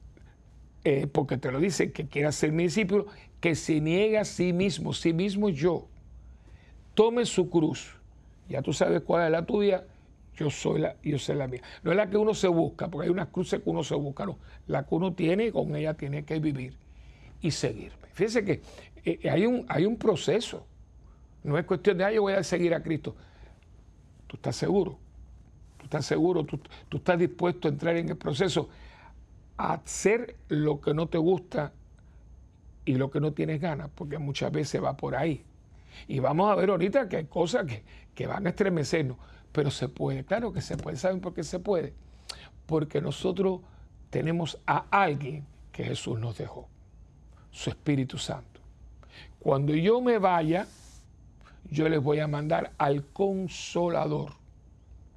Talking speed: 180 wpm